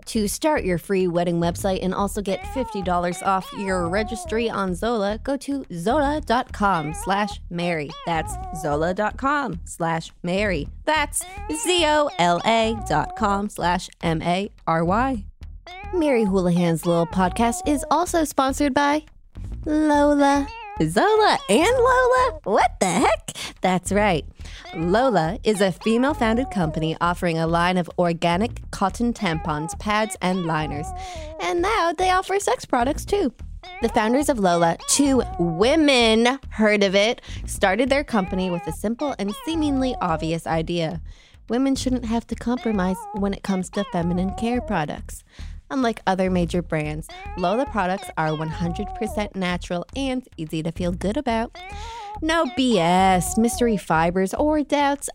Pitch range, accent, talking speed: 175-260 Hz, American, 130 wpm